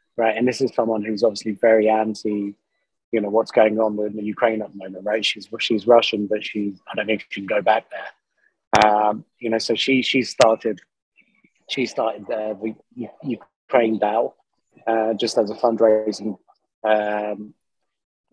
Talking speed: 175 wpm